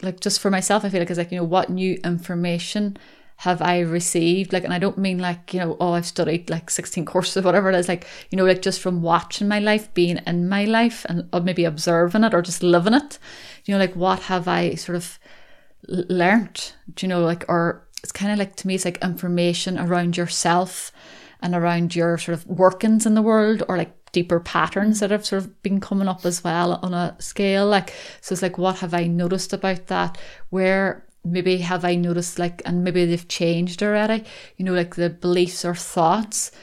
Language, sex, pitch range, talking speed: English, female, 175-195 Hz, 220 wpm